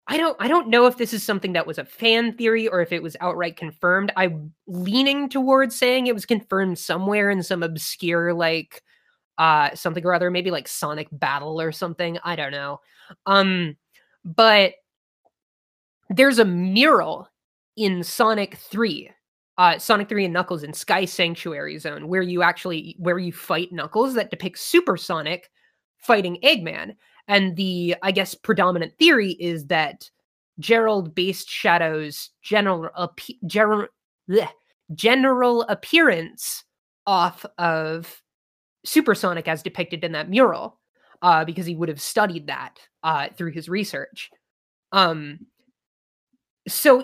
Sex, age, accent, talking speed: female, 20-39, American, 145 wpm